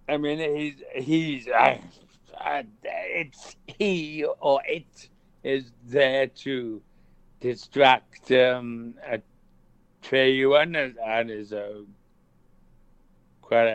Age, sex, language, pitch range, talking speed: 60-79, male, English, 110-135 Hz, 90 wpm